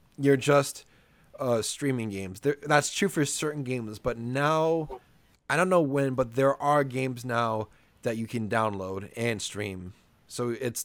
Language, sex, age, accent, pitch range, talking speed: English, male, 20-39, American, 105-145 Hz, 165 wpm